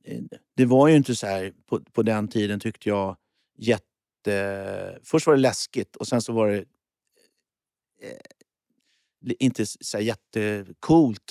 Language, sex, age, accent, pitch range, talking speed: Swedish, male, 50-69, native, 100-135 Hz, 135 wpm